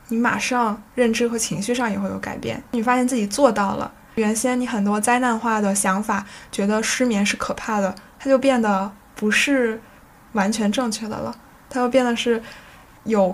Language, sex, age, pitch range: Chinese, female, 10-29, 205-240 Hz